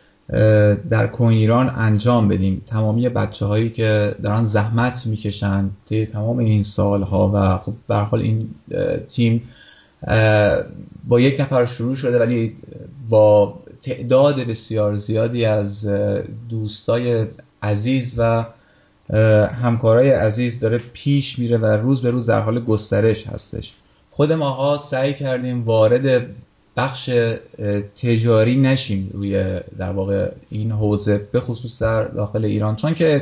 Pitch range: 105-130 Hz